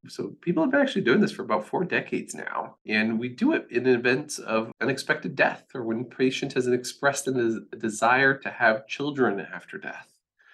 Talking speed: 190 wpm